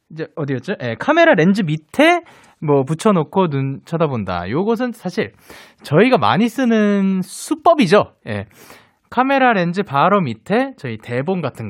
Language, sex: Korean, male